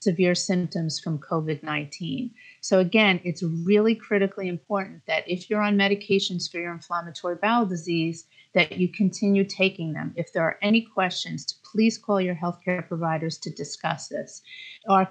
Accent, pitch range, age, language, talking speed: American, 170-200 Hz, 40-59, English, 155 wpm